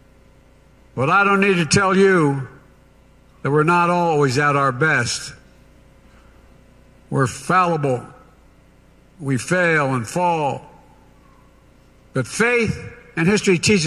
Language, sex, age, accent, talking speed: English, male, 60-79, American, 110 wpm